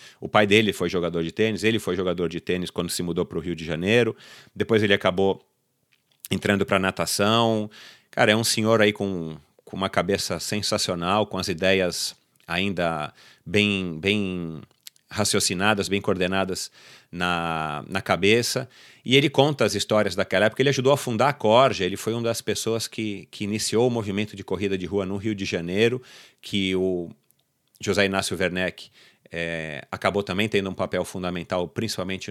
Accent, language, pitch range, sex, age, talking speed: Brazilian, Portuguese, 90-110 Hz, male, 40-59, 170 wpm